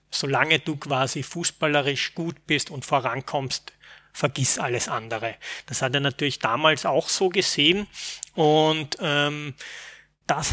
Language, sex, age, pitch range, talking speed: German, male, 30-49, 135-160 Hz, 125 wpm